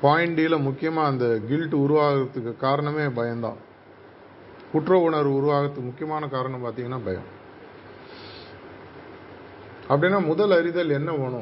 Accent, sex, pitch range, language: native, male, 125-155 Hz, Tamil